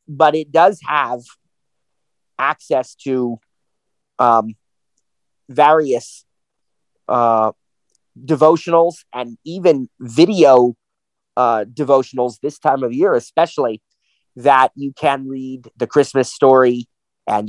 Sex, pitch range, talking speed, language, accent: male, 125-155 Hz, 95 wpm, English, American